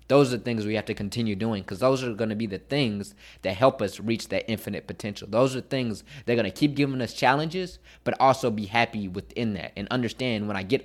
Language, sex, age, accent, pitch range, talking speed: English, male, 20-39, American, 100-125 Hz, 255 wpm